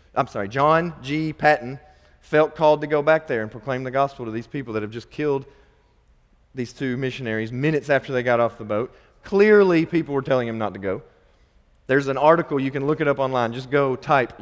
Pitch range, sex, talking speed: 125-170 Hz, male, 215 wpm